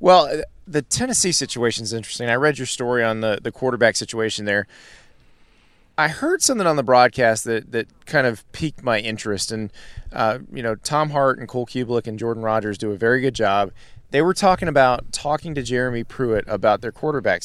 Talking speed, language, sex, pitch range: 195 wpm, English, male, 115-150 Hz